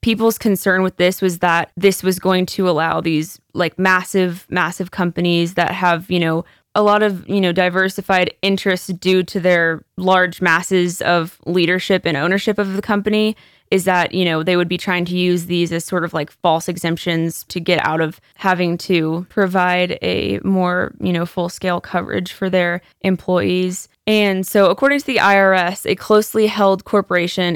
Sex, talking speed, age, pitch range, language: female, 180 wpm, 20-39, 170-190 Hz, English